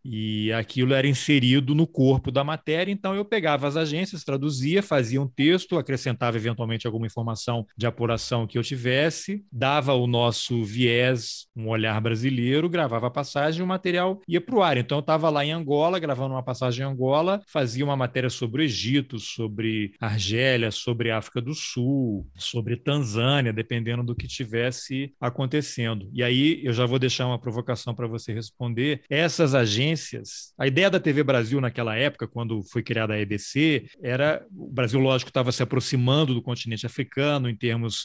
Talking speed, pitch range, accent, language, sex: 175 wpm, 115-145 Hz, Brazilian, Portuguese, male